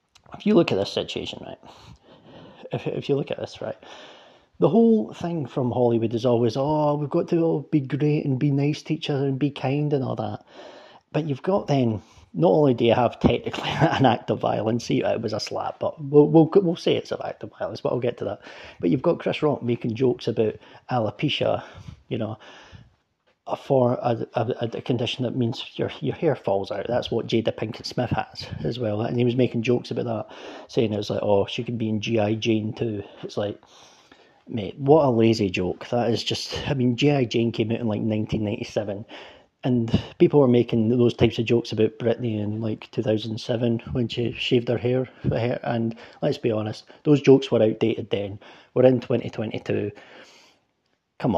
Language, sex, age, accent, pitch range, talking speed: English, male, 30-49, British, 115-145 Hz, 210 wpm